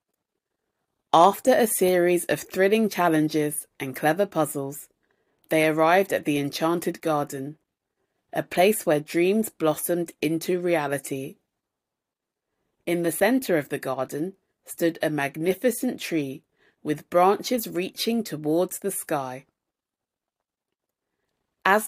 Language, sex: English, female